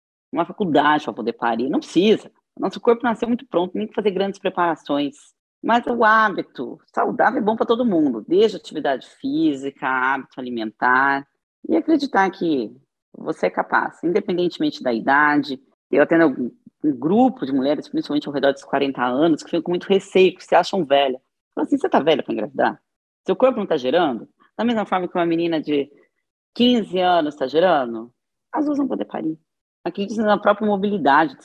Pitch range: 150-225 Hz